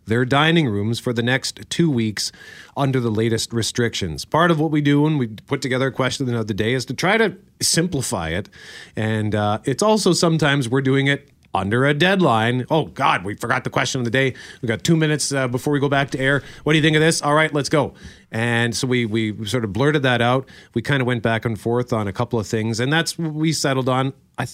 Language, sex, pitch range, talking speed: English, male, 110-140 Hz, 245 wpm